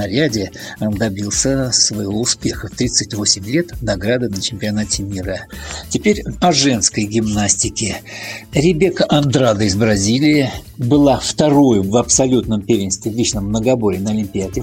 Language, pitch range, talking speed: Russian, 105-130 Hz, 125 wpm